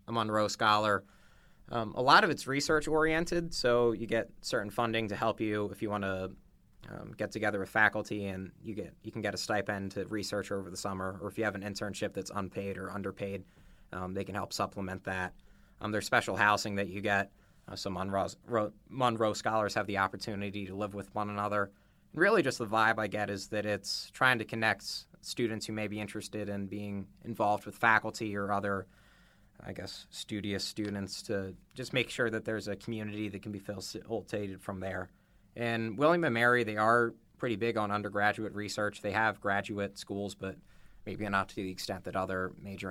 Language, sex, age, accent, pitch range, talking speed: English, male, 20-39, American, 95-110 Hz, 195 wpm